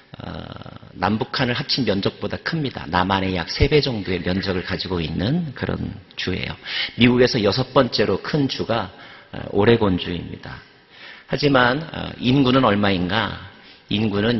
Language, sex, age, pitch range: Korean, male, 50-69, 95-130 Hz